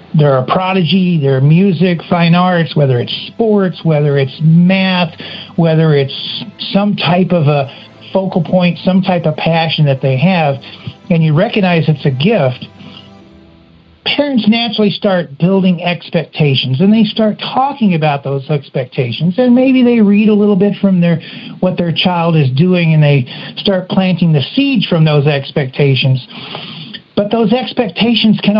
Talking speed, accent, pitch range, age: 155 wpm, American, 160-205 Hz, 60-79